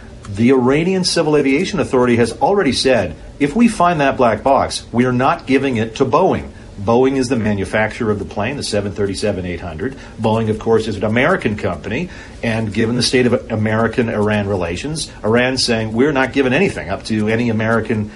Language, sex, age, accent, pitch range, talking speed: English, male, 40-59, American, 110-135 Hz, 180 wpm